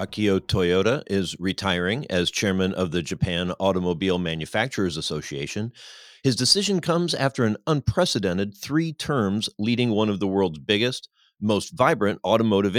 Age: 40-59